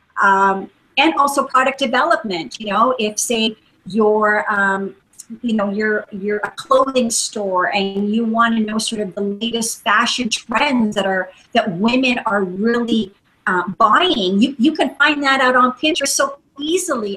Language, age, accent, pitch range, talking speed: English, 40-59, American, 205-260 Hz, 165 wpm